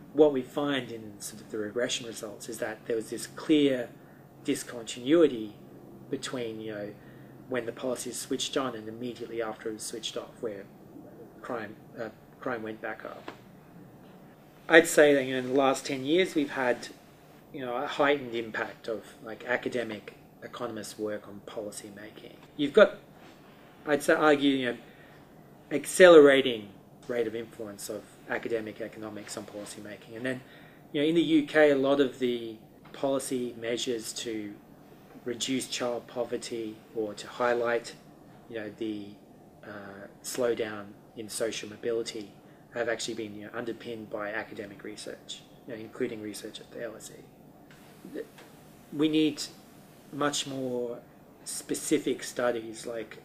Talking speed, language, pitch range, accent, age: 150 wpm, English, 110-135 Hz, Australian, 30-49